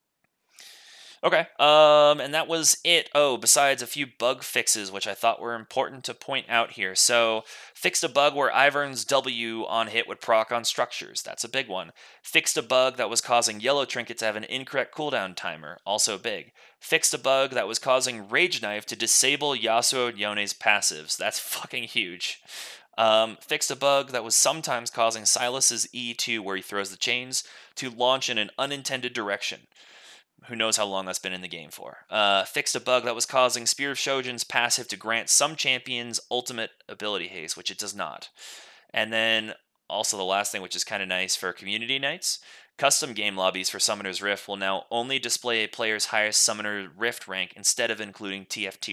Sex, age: male, 30-49